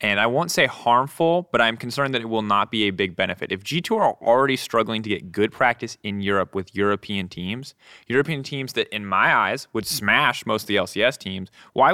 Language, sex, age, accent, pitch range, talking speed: English, male, 20-39, American, 95-120 Hz, 220 wpm